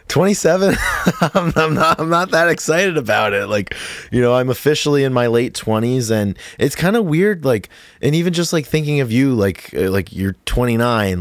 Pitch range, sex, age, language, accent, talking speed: 75-110 Hz, male, 20-39, English, American, 195 wpm